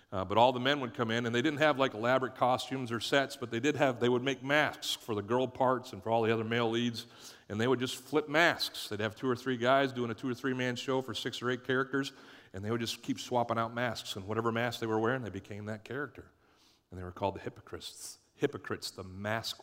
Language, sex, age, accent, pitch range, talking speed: English, male, 40-59, American, 100-120 Hz, 265 wpm